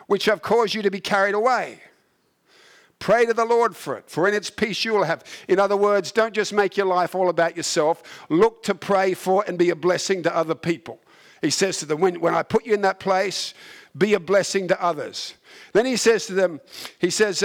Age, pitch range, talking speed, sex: 50-69, 180-210 Hz, 230 wpm, male